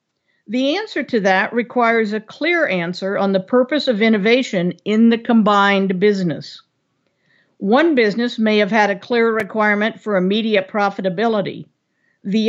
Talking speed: 140 wpm